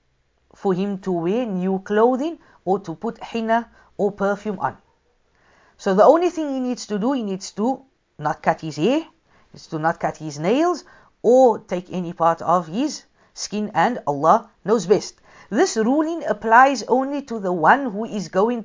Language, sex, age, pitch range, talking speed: English, female, 50-69, 175-245 Hz, 175 wpm